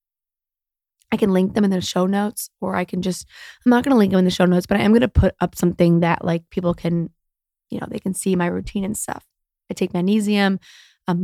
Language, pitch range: English, 180-210 Hz